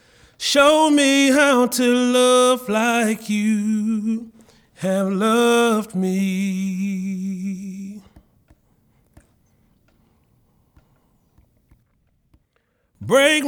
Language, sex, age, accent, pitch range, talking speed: Italian, male, 30-49, American, 210-255 Hz, 50 wpm